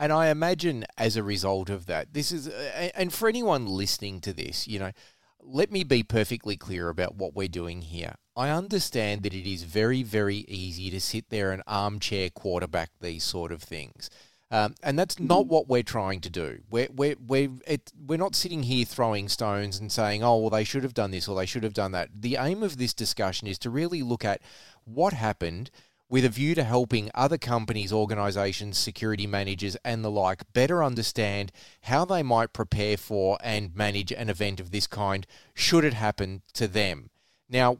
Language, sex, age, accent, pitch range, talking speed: English, male, 30-49, Australian, 95-125 Hz, 195 wpm